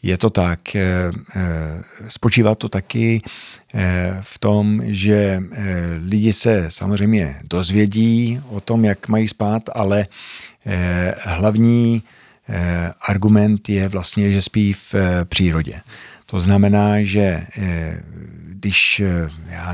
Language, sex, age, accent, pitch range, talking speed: Czech, male, 50-69, native, 90-105 Hz, 95 wpm